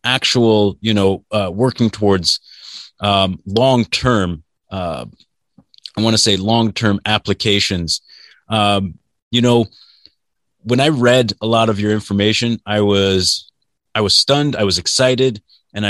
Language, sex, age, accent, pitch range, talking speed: English, male, 30-49, American, 100-120 Hz, 125 wpm